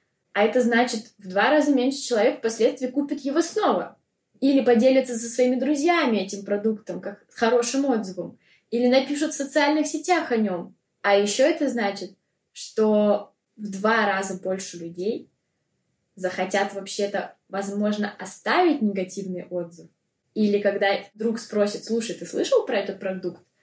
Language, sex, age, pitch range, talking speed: Russian, female, 20-39, 190-245 Hz, 140 wpm